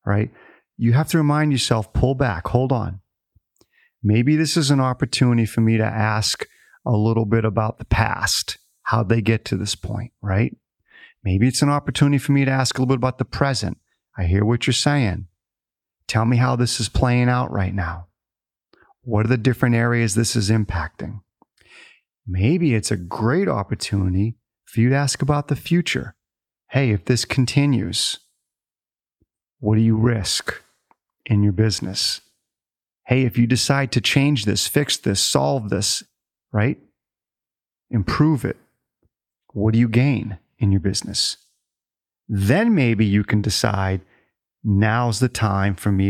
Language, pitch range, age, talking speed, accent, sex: English, 100-130 Hz, 40-59, 160 wpm, American, male